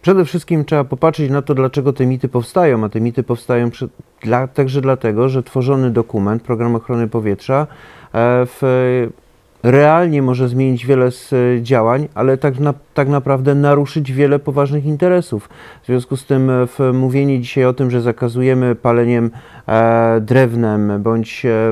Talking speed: 135 wpm